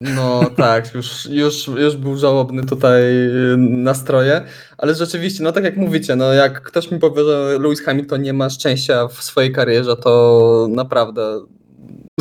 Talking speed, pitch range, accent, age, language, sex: 150 wpm, 130-150 Hz, native, 20-39, Polish, male